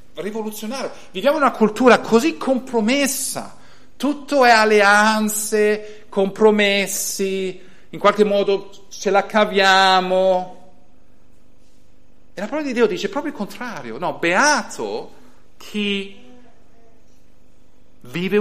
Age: 50-69